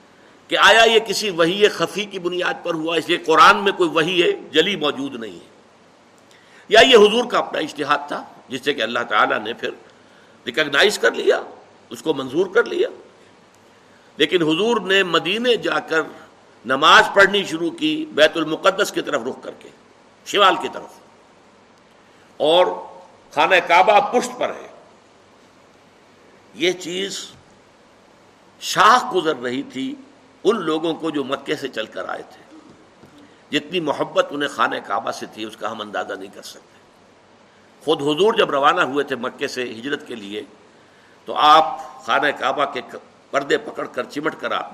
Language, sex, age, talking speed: Urdu, male, 60-79, 160 wpm